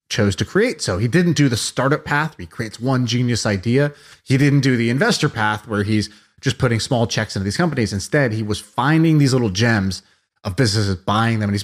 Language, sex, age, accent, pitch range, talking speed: English, male, 30-49, American, 105-140 Hz, 225 wpm